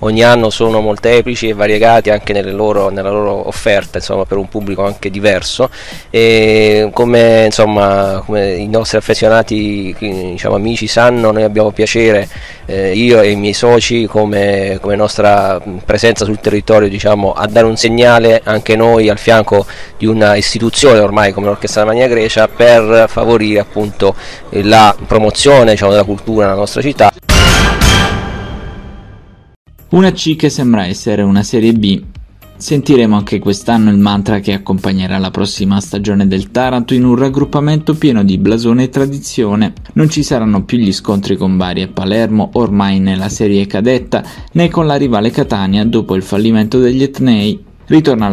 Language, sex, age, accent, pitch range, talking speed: Italian, male, 30-49, native, 100-120 Hz, 145 wpm